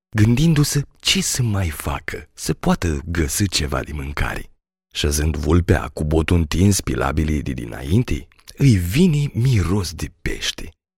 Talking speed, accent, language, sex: 130 wpm, native, Romanian, male